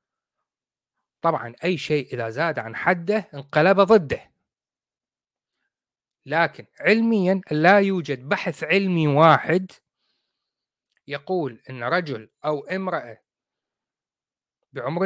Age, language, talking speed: 30-49, Arabic, 90 wpm